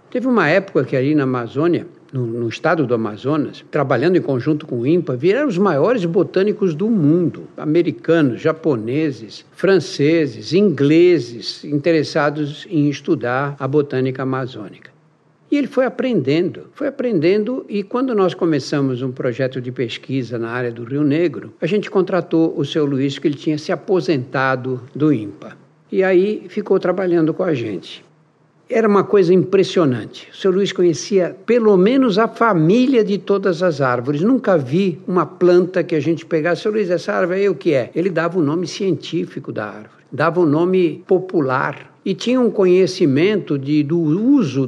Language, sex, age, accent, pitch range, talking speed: Portuguese, male, 60-79, Brazilian, 140-190 Hz, 170 wpm